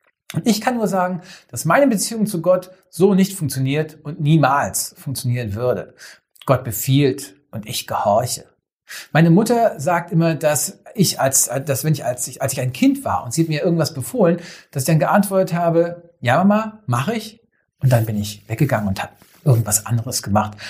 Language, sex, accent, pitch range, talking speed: German, male, German, 130-175 Hz, 185 wpm